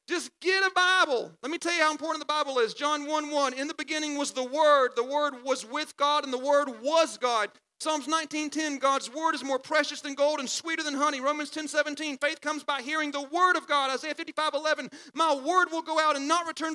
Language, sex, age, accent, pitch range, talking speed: English, male, 40-59, American, 300-345 Hz, 235 wpm